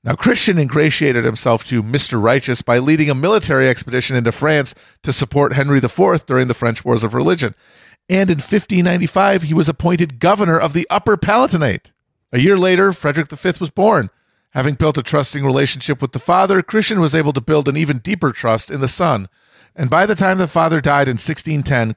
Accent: American